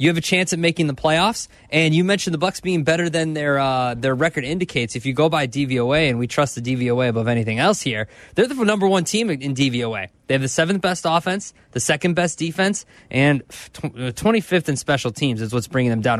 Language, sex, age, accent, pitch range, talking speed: English, male, 20-39, American, 125-175 Hz, 235 wpm